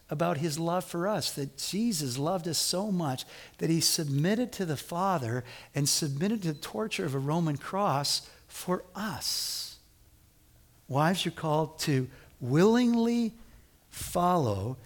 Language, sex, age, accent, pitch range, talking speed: English, male, 60-79, American, 130-185 Hz, 135 wpm